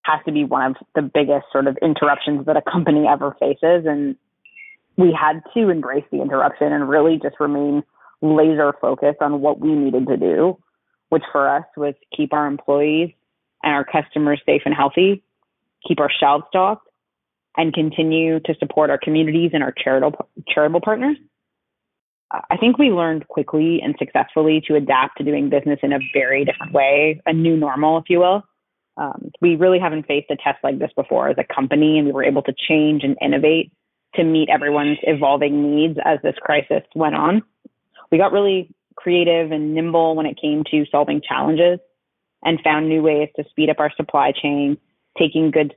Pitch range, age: 145-165 Hz, 20-39